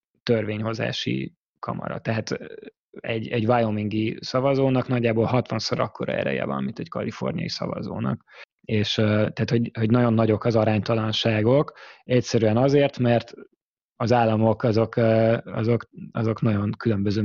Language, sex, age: Hungarian, male, 20-39